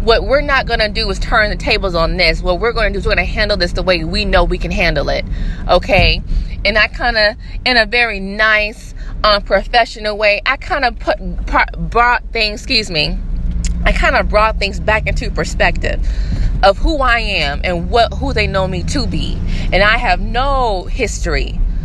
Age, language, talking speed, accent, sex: 30-49, English, 200 wpm, American, female